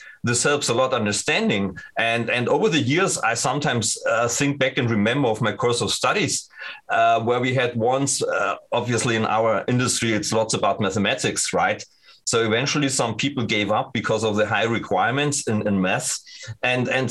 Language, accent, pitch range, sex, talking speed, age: English, German, 110-140 Hz, male, 185 wpm, 30-49